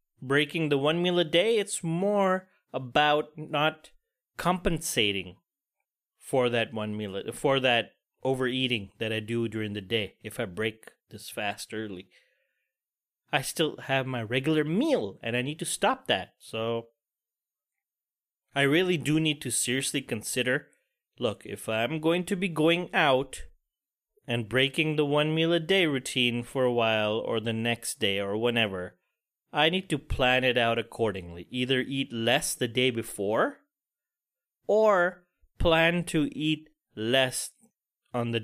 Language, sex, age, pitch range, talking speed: English, male, 30-49, 115-160 Hz, 150 wpm